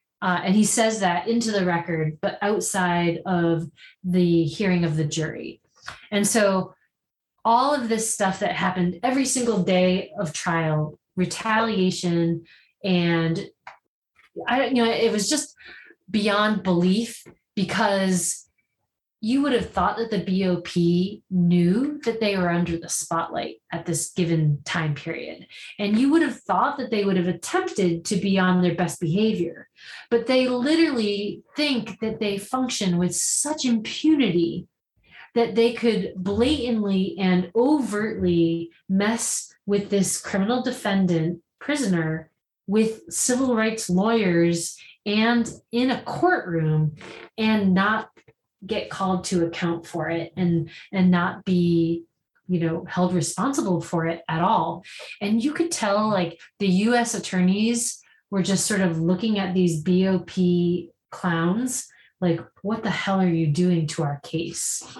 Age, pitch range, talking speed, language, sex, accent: 30-49, 170-225 Hz, 140 wpm, English, female, American